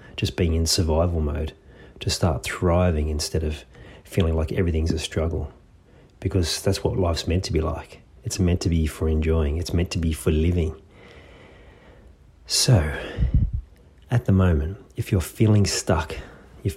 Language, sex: English, male